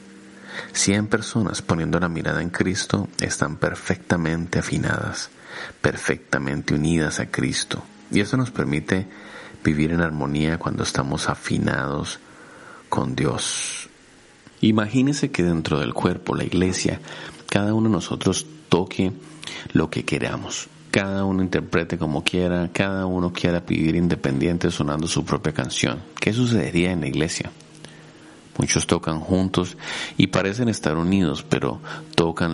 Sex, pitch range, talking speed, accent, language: male, 80-100 Hz, 125 wpm, Mexican, Spanish